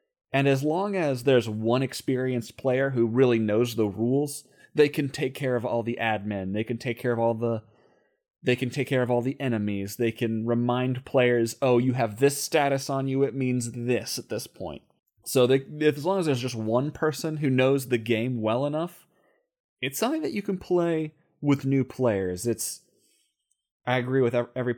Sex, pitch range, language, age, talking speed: male, 115-140 Hz, English, 30-49, 200 wpm